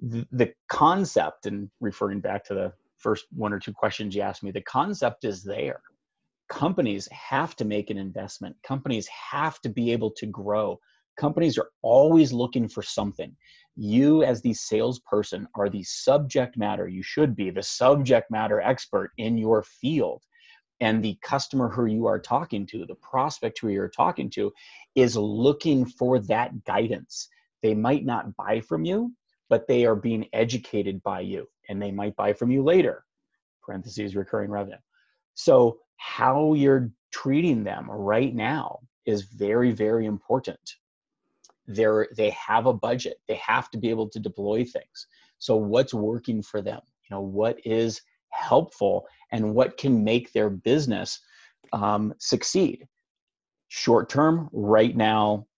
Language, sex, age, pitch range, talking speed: English, male, 30-49, 105-130 Hz, 155 wpm